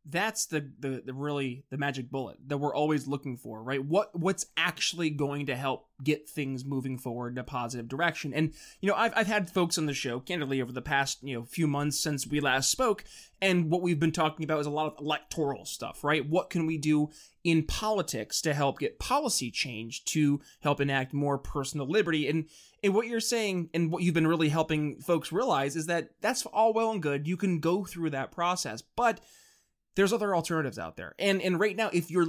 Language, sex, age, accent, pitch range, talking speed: English, male, 20-39, American, 140-180 Hz, 220 wpm